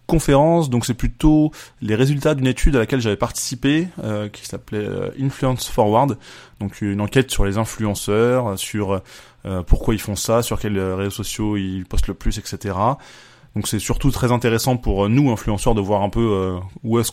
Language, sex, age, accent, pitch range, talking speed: French, male, 20-39, French, 100-125 Hz, 190 wpm